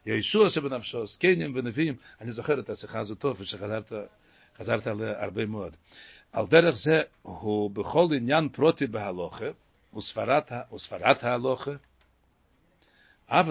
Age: 60-79